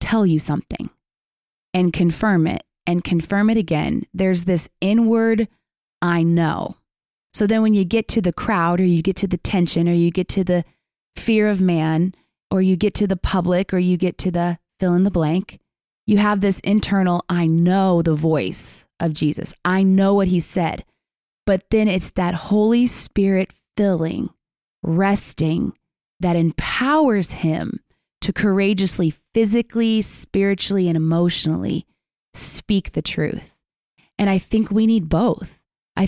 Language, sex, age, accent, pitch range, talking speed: English, female, 20-39, American, 175-215 Hz, 155 wpm